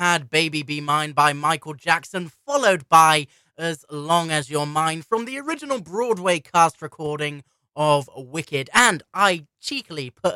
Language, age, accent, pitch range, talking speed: English, 20-39, British, 150-205 Hz, 150 wpm